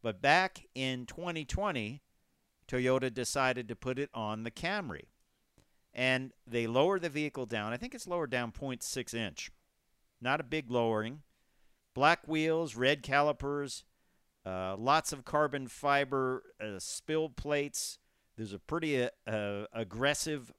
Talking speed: 135 wpm